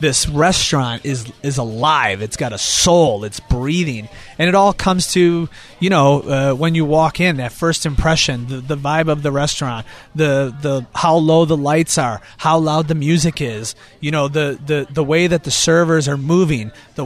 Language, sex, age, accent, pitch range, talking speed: English, male, 30-49, American, 135-175 Hz, 195 wpm